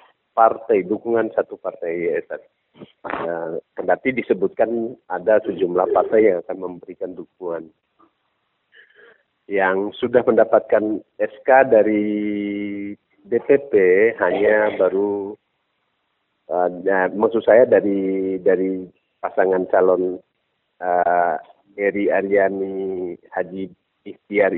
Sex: male